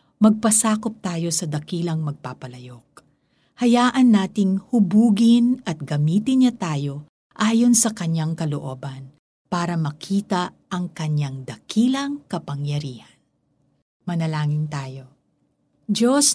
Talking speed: 90 wpm